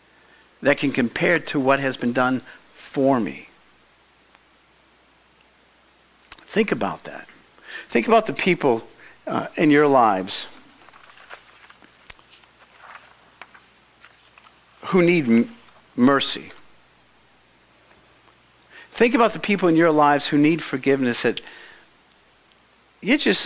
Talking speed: 95 wpm